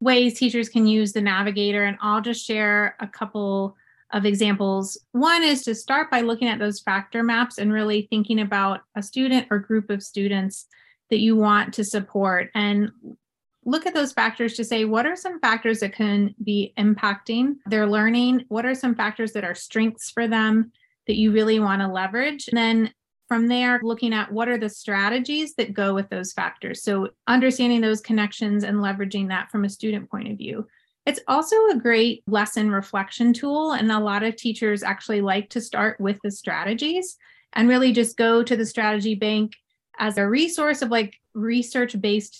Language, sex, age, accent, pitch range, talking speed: English, female, 30-49, American, 205-235 Hz, 185 wpm